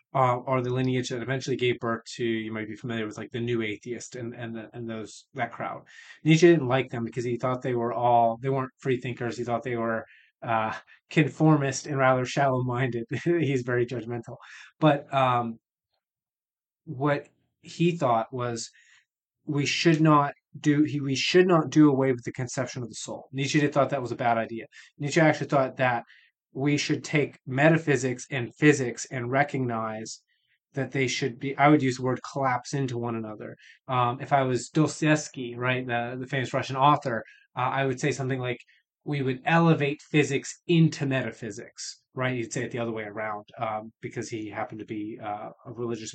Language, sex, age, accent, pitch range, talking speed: English, male, 20-39, American, 120-140 Hz, 190 wpm